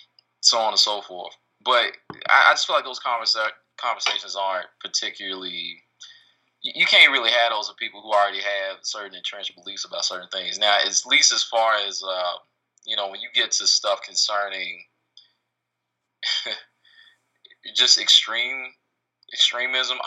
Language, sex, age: English, male, 20-39